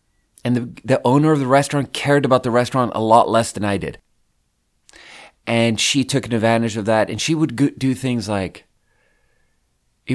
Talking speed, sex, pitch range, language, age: 175 wpm, male, 100-125 Hz, English, 30-49